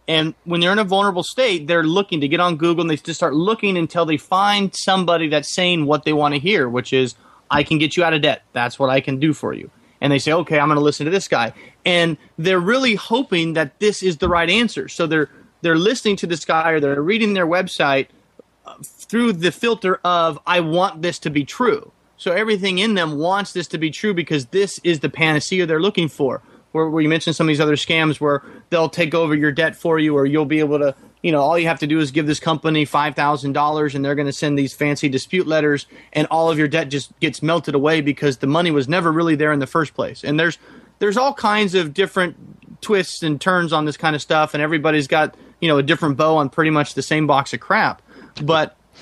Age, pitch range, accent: 30-49, 150-180 Hz, American